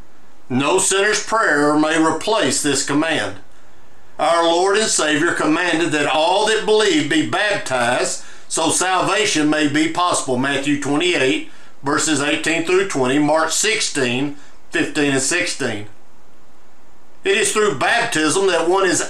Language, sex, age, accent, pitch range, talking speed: English, male, 50-69, American, 145-220 Hz, 130 wpm